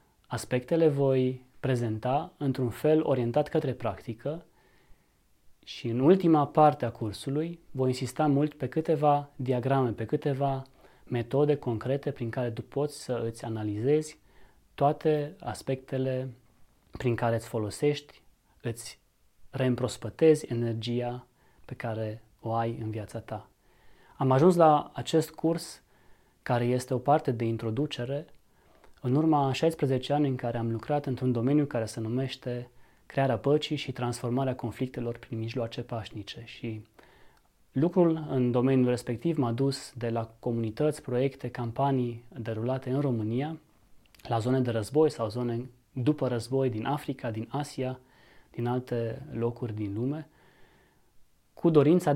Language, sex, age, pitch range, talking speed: Romanian, male, 20-39, 120-145 Hz, 130 wpm